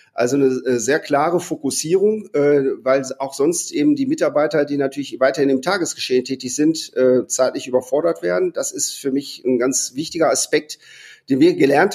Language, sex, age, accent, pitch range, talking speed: German, male, 40-59, German, 135-190 Hz, 160 wpm